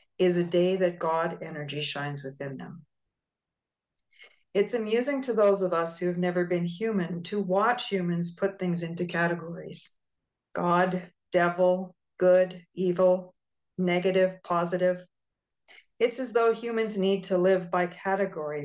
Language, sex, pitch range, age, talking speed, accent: English, female, 170-195 Hz, 50-69, 135 wpm, American